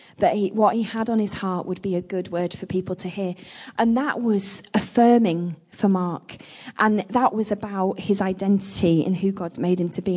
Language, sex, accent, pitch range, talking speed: English, female, British, 180-215 Hz, 210 wpm